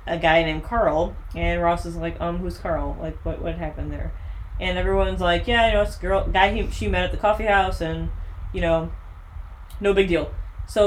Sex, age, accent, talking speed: female, 20-39, American, 215 wpm